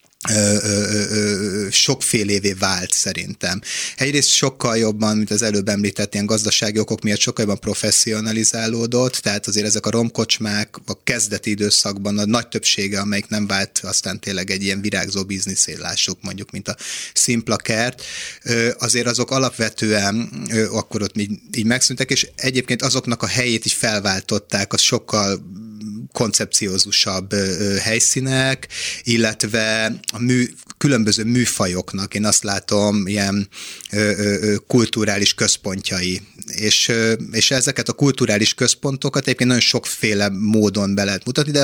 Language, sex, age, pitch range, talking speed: Hungarian, male, 30-49, 100-120 Hz, 125 wpm